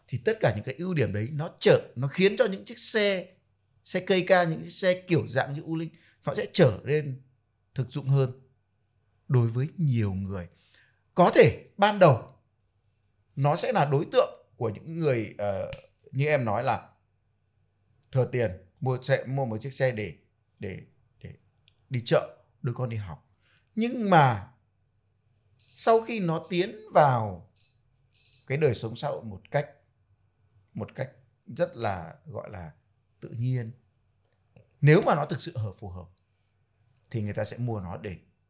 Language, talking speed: Vietnamese, 170 wpm